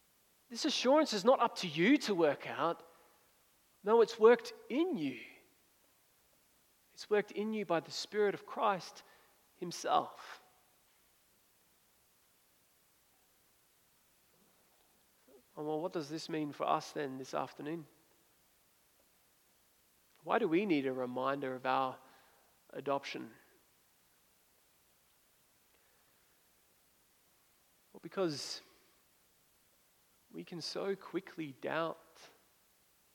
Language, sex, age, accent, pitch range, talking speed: English, male, 40-59, Australian, 150-215 Hz, 90 wpm